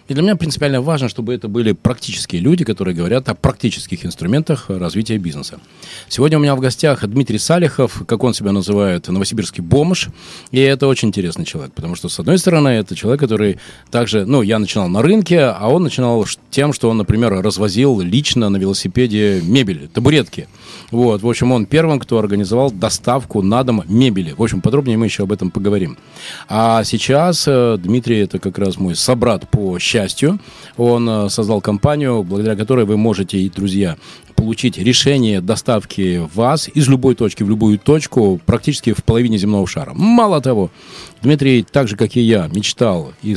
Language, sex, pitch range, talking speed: Russian, male, 105-140 Hz, 170 wpm